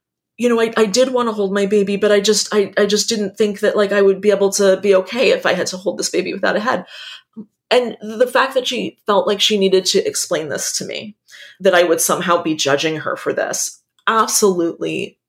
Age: 30-49